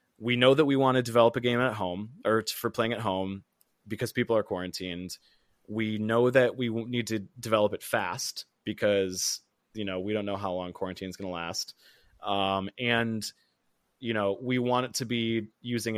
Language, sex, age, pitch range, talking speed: English, male, 20-39, 100-125 Hz, 195 wpm